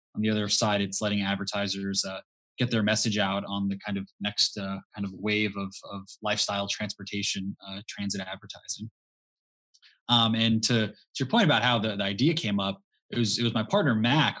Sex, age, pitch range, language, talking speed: male, 20-39, 100-115 Hz, English, 200 wpm